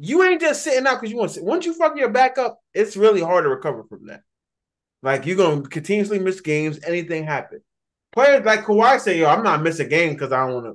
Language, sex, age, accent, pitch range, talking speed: English, male, 20-39, American, 135-190 Hz, 255 wpm